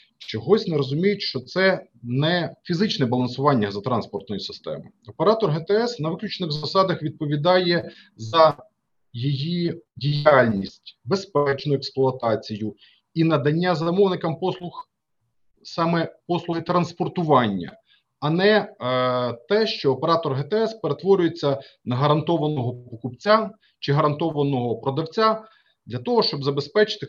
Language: Ukrainian